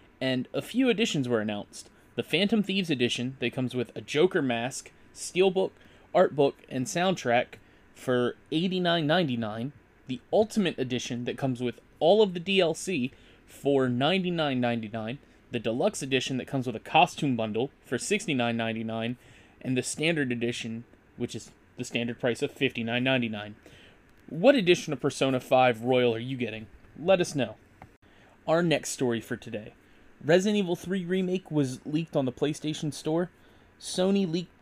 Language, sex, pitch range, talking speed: English, male, 120-175 Hz, 150 wpm